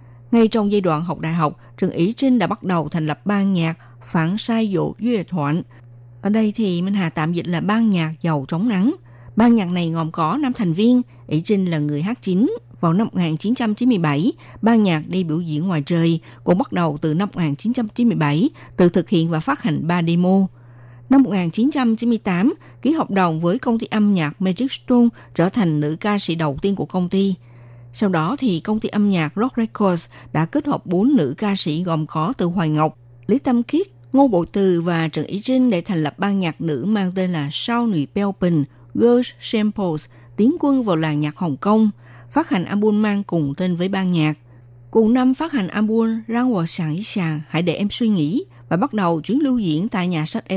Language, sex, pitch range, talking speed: Vietnamese, female, 155-220 Hz, 215 wpm